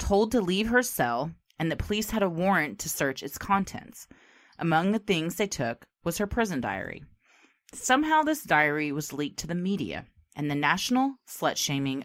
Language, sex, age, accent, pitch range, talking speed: English, female, 30-49, American, 135-215 Hz, 180 wpm